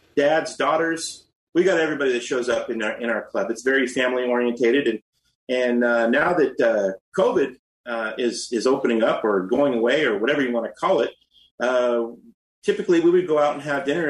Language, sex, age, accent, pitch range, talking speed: English, male, 30-49, American, 130-175 Hz, 205 wpm